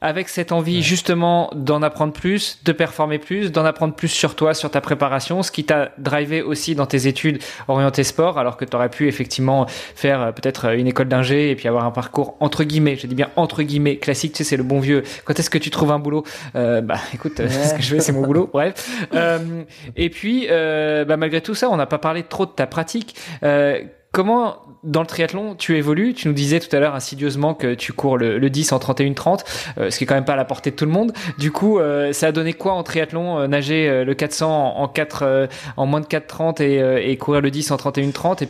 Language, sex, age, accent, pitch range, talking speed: French, male, 20-39, French, 135-165 Hz, 250 wpm